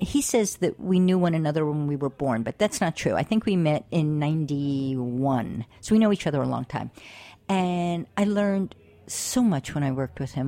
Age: 50-69